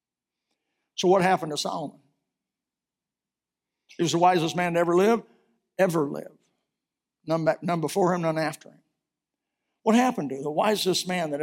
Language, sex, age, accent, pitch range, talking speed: English, male, 60-79, American, 155-190 Hz, 150 wpm